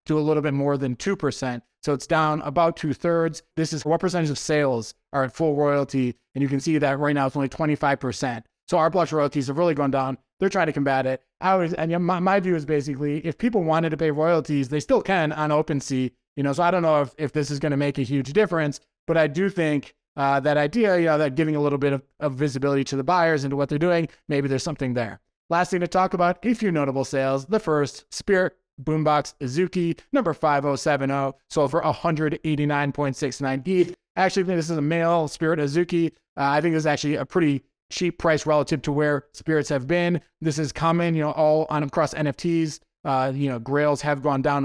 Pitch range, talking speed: 140-165 Hz, 230 wpm